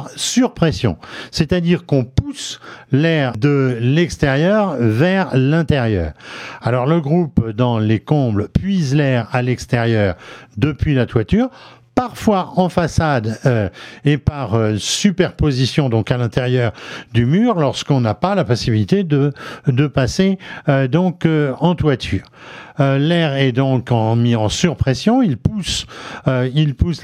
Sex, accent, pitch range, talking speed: male, French, 125-165 Hz, 135 wpm